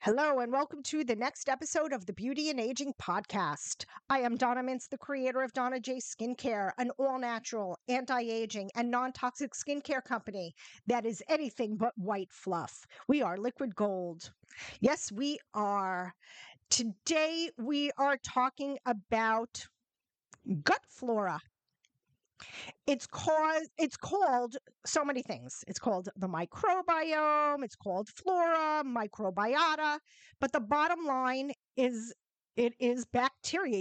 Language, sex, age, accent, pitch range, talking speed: English, female, 40-59, American, 235-305 Hz, 130 wpm